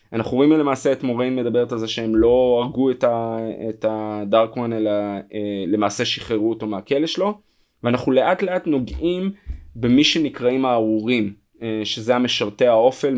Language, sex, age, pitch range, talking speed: Hebrew, male, 20-39, 105-130 Hz, 150 wpm